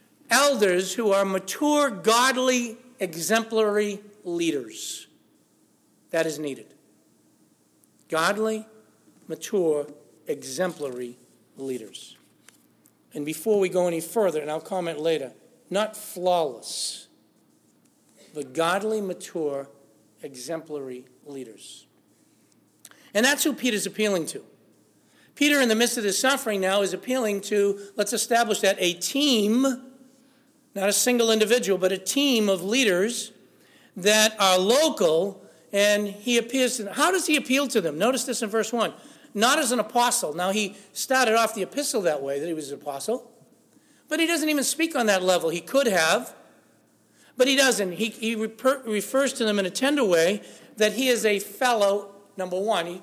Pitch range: 185-250 Hz